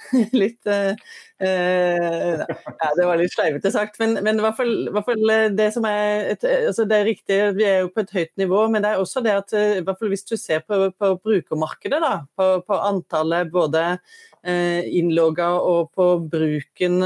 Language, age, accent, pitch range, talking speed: English, 30-49, Swedish, 175-215 Hz, 190 wpm